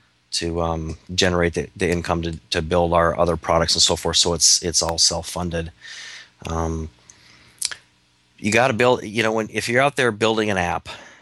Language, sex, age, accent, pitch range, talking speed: English, male, 30-49, American, 85-100 Hz, 185 wpm